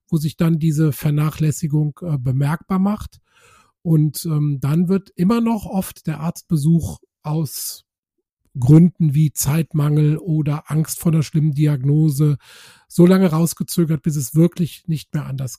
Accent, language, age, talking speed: German, German, 40-59, 140 wpm